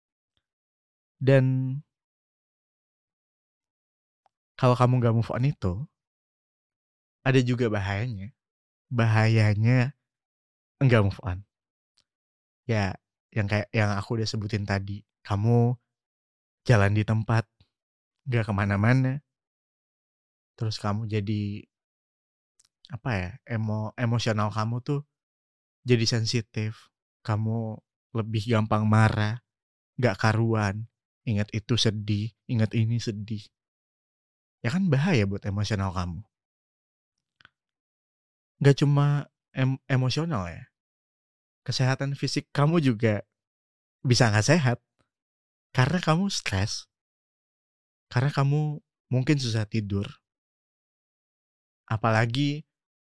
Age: 20-39